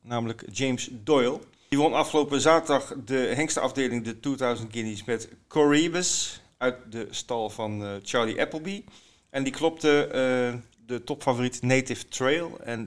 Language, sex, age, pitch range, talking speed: Dutch, male, 40-59, 110-140 Hz, 135 wpm